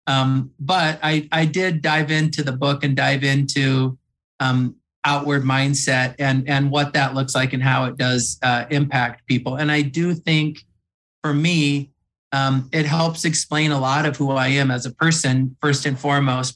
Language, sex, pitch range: English, male, 130-150 Hz